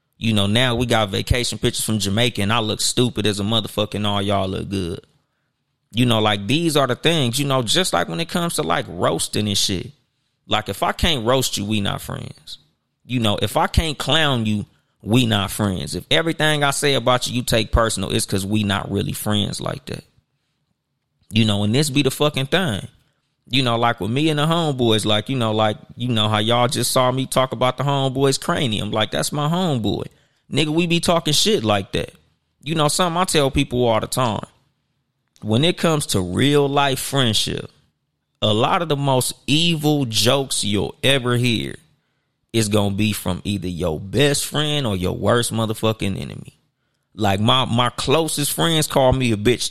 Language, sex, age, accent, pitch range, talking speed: English, male, 30-49, American, 105-140 Hz, 200 wpm